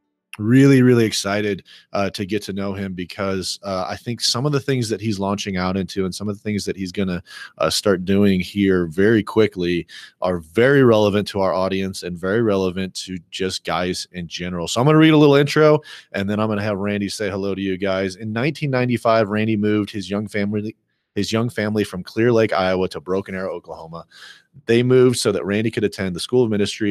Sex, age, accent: male, 30-49, American